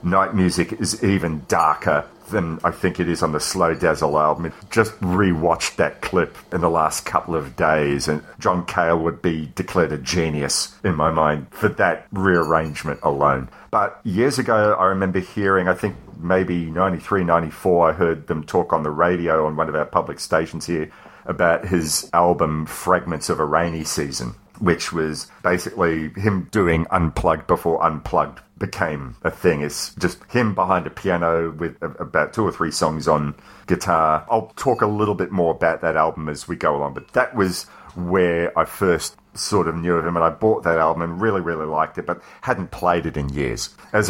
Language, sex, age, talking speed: English, male, 40-59, 190 wpm